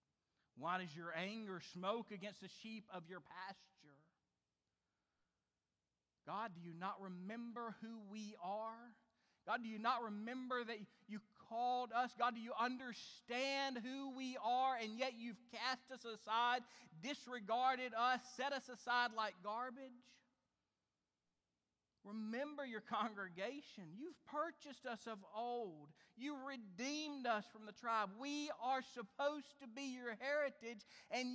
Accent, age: American, 40-59